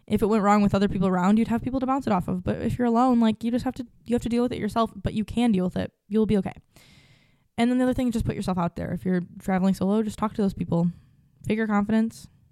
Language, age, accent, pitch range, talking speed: English, 10-29, American, 190-235 Hz, 295 wpm